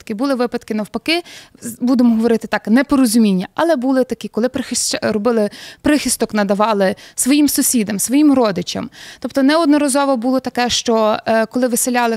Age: 20-39